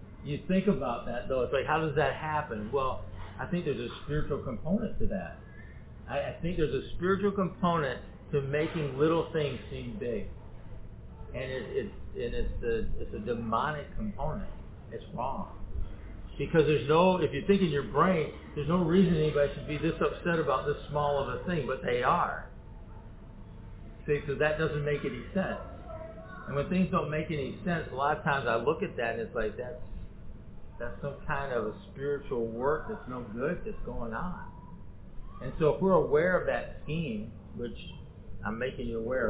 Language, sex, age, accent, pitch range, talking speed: English, male, 50-69, American, 115-160 Hz, 185 wpm